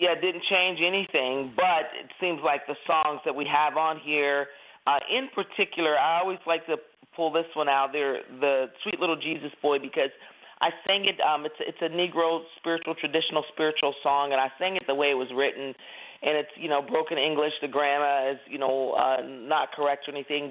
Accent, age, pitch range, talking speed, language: American, 40-59, 145-170 Hz, 210 wpm, English